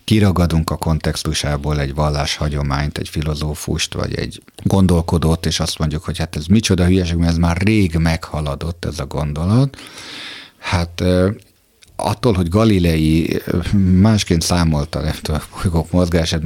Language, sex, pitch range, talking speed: Hungarian, male, 80-105 Hz, 130 wpm